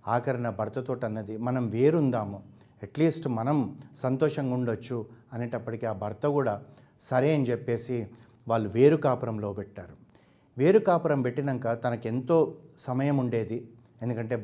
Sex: male